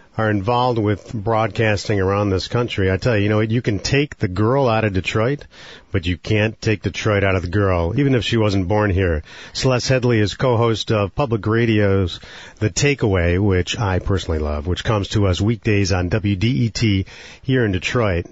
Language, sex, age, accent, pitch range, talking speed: English, male, 40-59, American, 95-115 Hz, 195 wpm